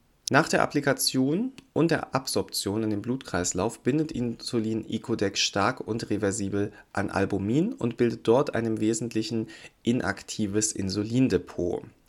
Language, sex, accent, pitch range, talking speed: German, male, German, 95-125 Hz, 120 wpm